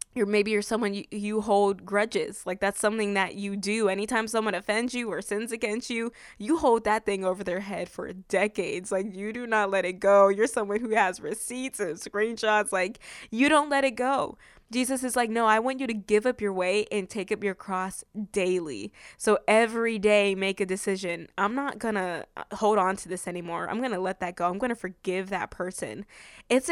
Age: 20-39